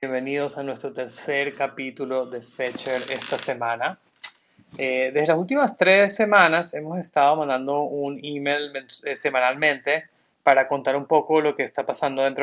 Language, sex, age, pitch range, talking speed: English, male, 20-39, 130-155 Hz, 150 wpm